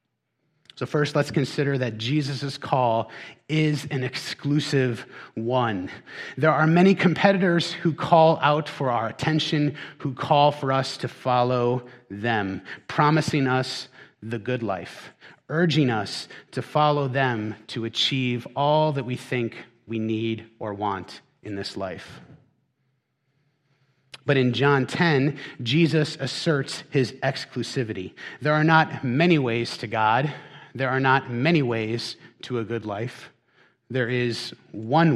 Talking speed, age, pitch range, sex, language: 135 wpm, 30-49, 115-150 Hz, male, English